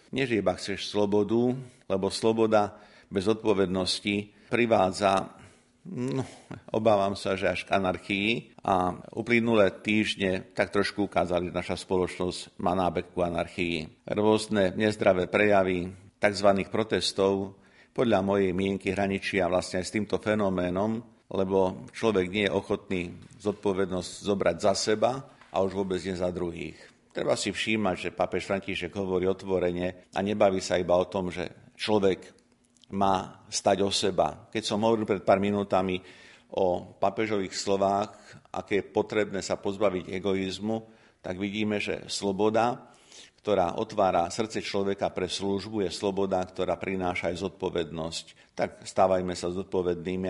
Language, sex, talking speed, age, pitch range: Slovak, male, 135 wpm, 50-69, 90-105 Hz